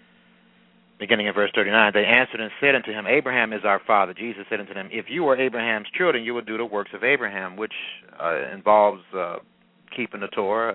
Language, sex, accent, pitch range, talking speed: English, male, American, 100-120 Hz, 205 wpm